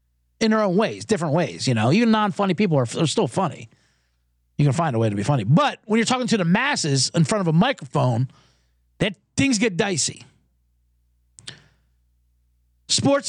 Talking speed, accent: 185 wpm, American